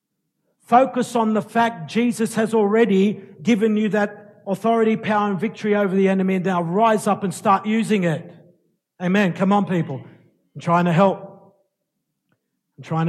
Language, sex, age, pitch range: English, male, 50-69, 195-225 Hz